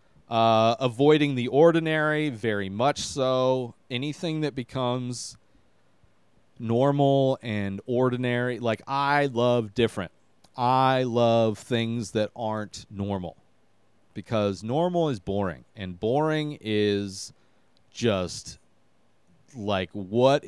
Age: 30-49